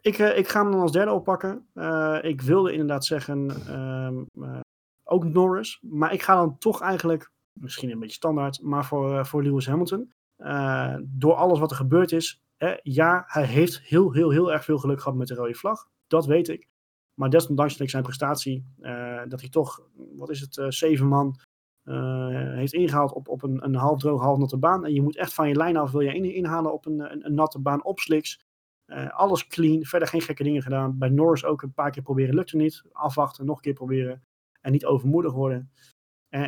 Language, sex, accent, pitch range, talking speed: Dutch, male, Dutch, 130-160 Hz, 215 wpm